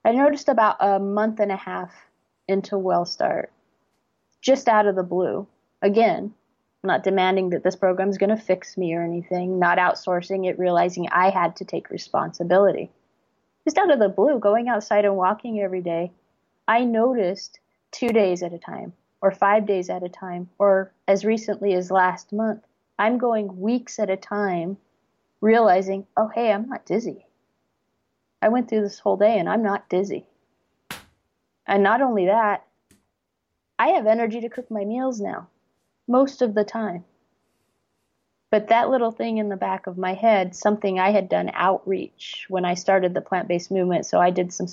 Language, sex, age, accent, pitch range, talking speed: English, female, 30-49, American, 180-215 Hz, 175 wpm